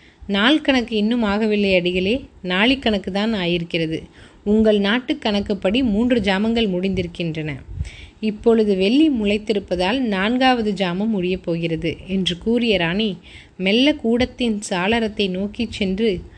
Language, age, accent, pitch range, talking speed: Tamil, 20-39, native, 195-240 Hz, 105 wpm